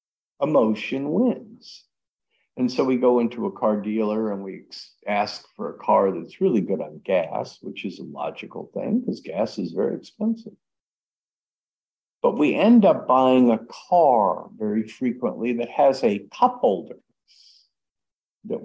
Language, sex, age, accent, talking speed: English, male, 50-69, American, 150 wpm